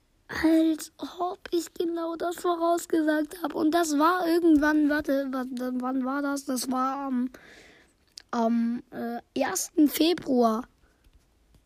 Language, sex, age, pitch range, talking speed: English, female, 20-39, 245-325 Hz, 105 wpm